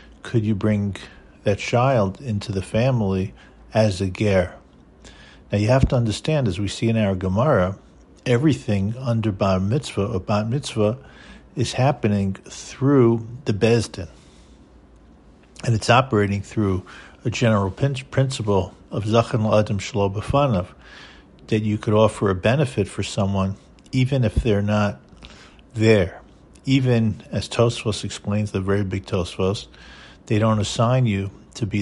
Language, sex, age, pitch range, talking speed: English, male, 50-69, 95-120 Hz, 135 wpm